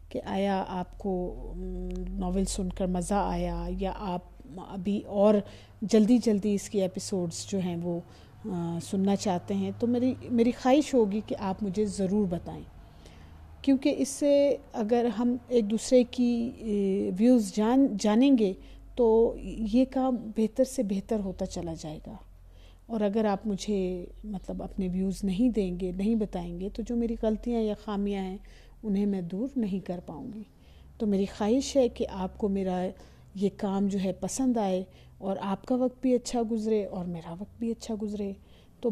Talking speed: 170 wpm